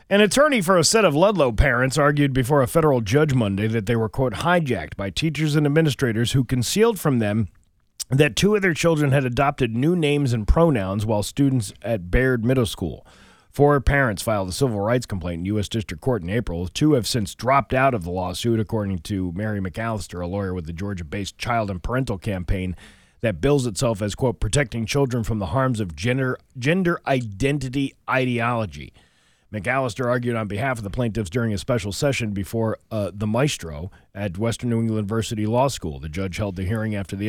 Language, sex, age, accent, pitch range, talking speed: English, male, 30-49, American, 100-135 Hz, 195 wpm